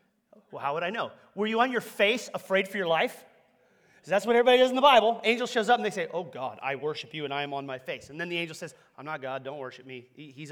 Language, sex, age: English, male, 30-49